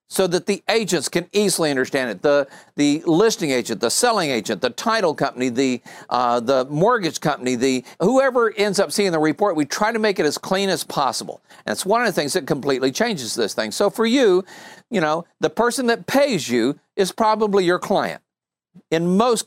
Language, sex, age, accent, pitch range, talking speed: English, male, 50-69, American, 150-205 Hz, 205 wpm